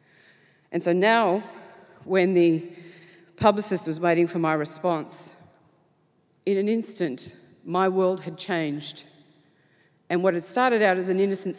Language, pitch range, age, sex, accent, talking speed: English, 165-205 Hz, 50-69, female, Australian, 135 wpm